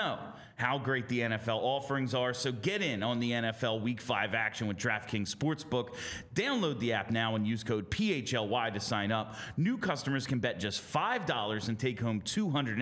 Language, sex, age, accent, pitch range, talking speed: English, male, 30-49, American, 105-130 Hz, 185 wpm